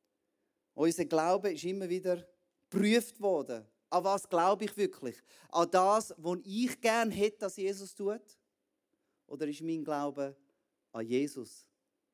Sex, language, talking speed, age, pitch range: male, German, 135 wpm, 30-49, 145-210 Hz